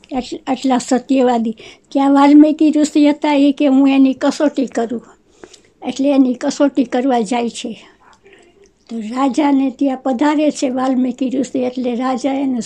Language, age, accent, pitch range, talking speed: Gujarati, 60-79, American, 265-300 Hz, 135 wpm